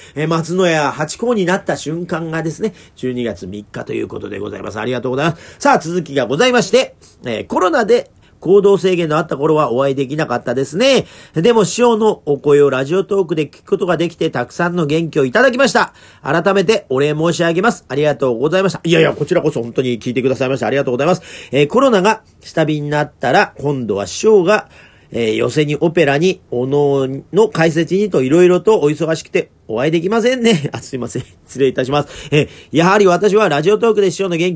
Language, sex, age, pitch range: Japanese, male, 40-59, 145-200 Hz